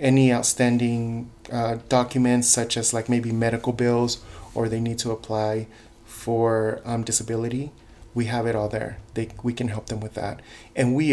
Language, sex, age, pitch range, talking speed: English, male, 30-49, 110-120 Hz, 175 wpm